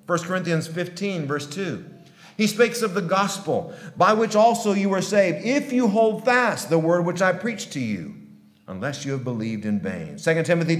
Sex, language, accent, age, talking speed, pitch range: male, English, American, 50-69, 195 wpm, 135-185 Hz